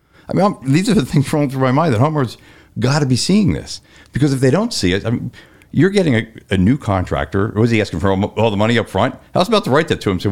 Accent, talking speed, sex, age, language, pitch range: American, 295 wpm, male, 50-69, English, 95-135 Hz